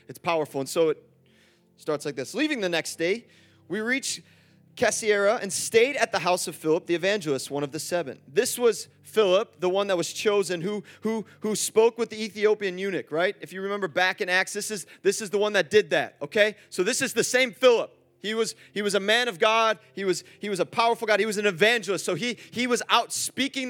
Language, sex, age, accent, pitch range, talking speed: English, male, 30-49, American, 180-240 Hz, 235 wpm